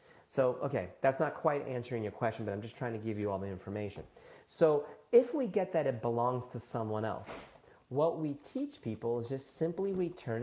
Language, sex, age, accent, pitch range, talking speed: English, male, 30-49, American, 105-160 Hz, 205 wpm